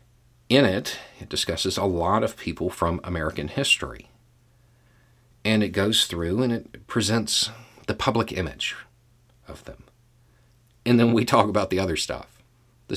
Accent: American